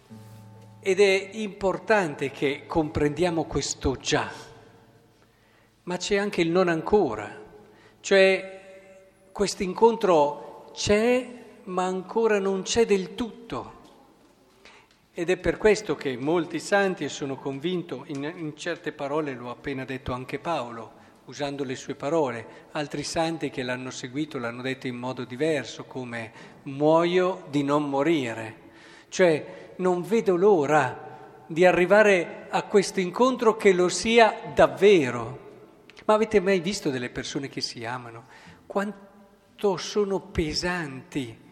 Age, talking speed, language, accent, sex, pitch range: 50-69, 125 wpm, Italian, native, male, 145-195 Hz